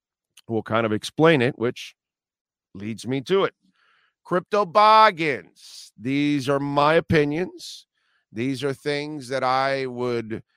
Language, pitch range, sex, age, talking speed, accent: English, 110-135 Hz, male, 50-69, 125 wpm, American